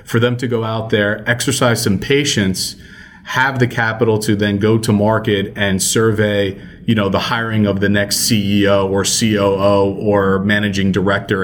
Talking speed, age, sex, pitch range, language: 170 wpm, 30-49, male, 100-115 Hz, English